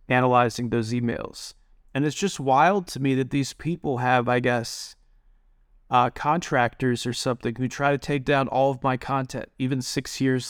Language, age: English, 30-49